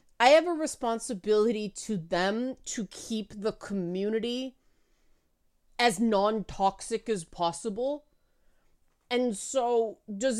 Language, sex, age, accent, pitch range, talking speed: English, female, 30-49, American, 180-235 Hz, 100 wpm